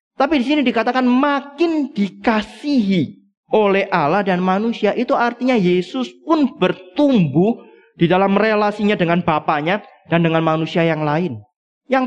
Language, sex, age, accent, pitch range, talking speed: Indonesian, male, 30-49, native, 175-245 Hz, 130 wpm